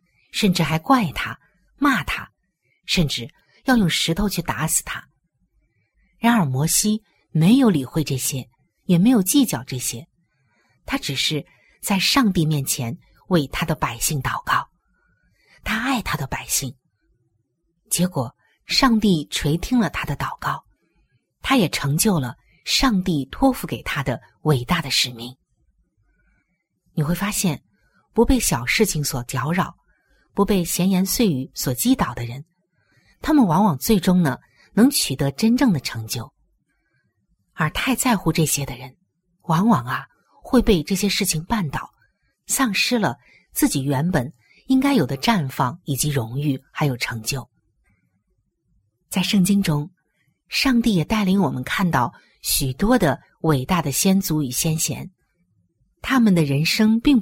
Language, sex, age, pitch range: Chinese, female, 50-69, 135-205 Hz